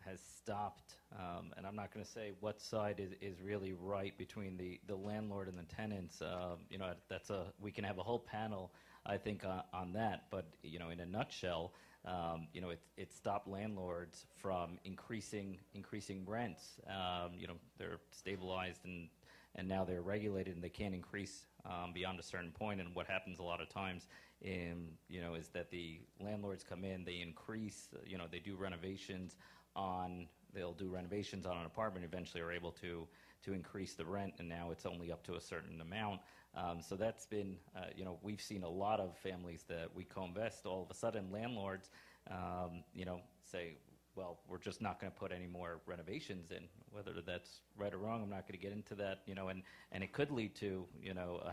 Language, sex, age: English, male, 30-49